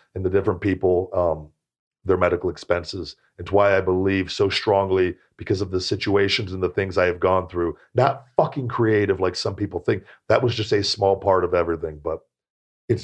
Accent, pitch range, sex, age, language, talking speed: American, 95-115 Hz, male, 40-59, English, 195 wpm